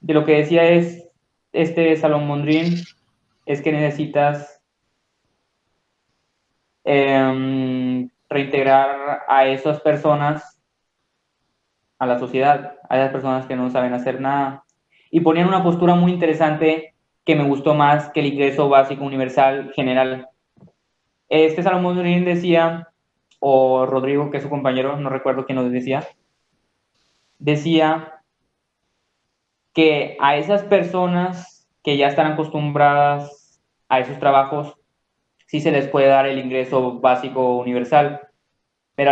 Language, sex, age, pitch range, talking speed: Spanish, male, 20-39, 135-160 Hz, 120 wpm